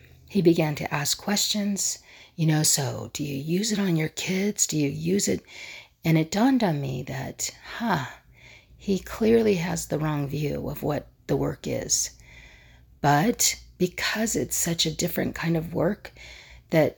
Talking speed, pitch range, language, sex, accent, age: 170 wpm, 140-175 Hz, English, female, American, 40-59